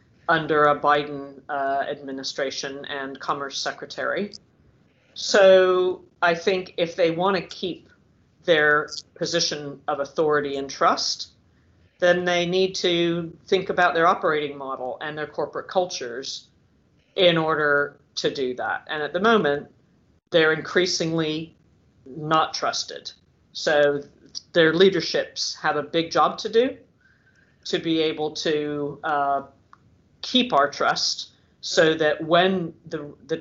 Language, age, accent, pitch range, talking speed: English, 40-59, American, 140-170 Hz, 125 wpm